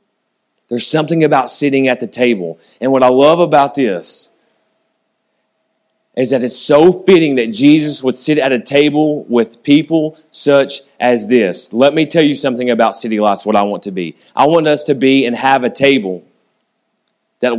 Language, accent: English, American